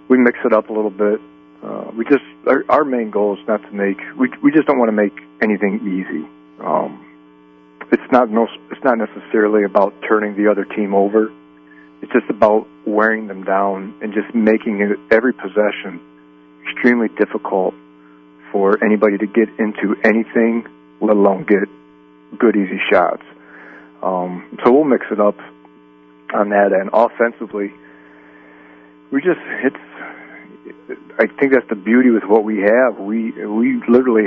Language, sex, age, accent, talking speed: English, male, 40-59, American, 160 wpm